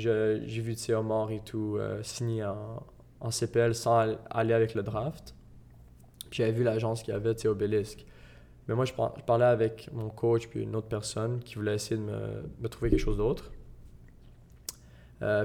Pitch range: 110-120 Hz